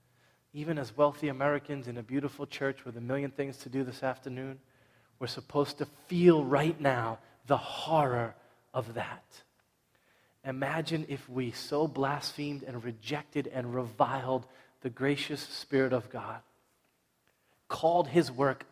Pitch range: 125-145 Hz